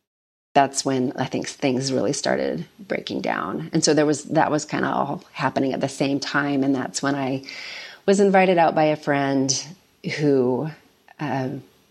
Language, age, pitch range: English, 30-49, 135-165 Hz